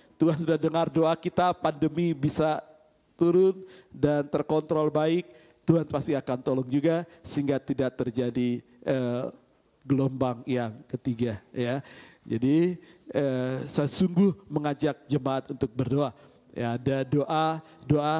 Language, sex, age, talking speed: Indonesian, male, 40-59, 120 wpm